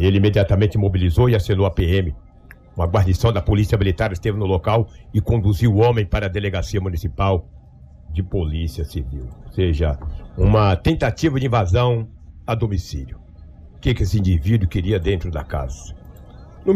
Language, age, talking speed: Portuguese, 60-79, 155 wpm